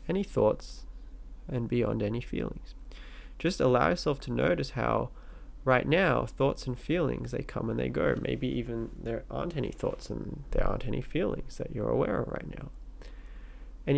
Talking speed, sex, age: 165 wpm, male, 20-39